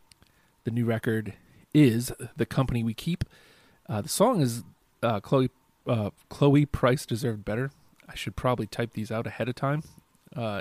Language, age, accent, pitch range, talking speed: English, 30-49, American, 110-130 Hz, 165 wpm